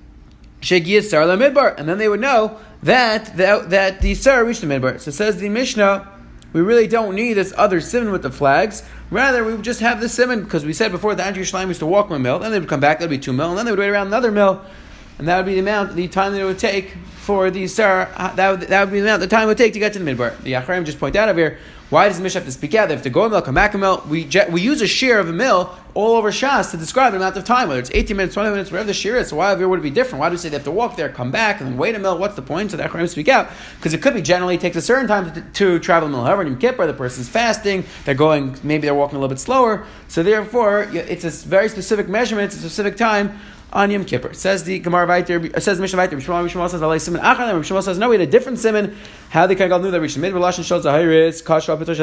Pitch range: 160-205 Hz